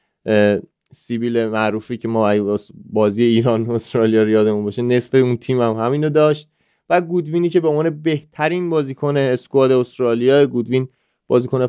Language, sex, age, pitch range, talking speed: Persian, male, 30-49, 120-155 Hz, 145 wpm